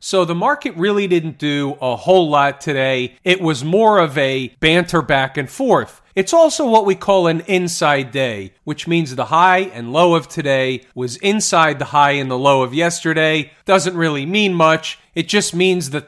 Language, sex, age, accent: English, male, 40-59, American